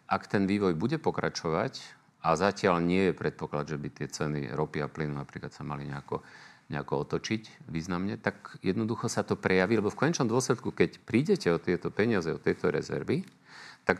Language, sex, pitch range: Slovak, male, 80-110 Hz